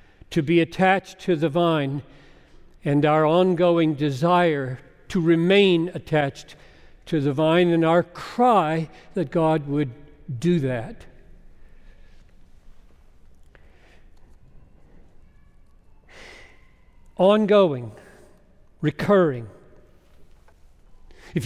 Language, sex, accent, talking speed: English, male, American, 75 wpm